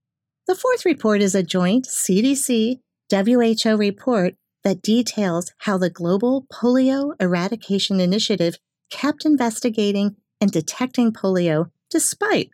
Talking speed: 105 wpm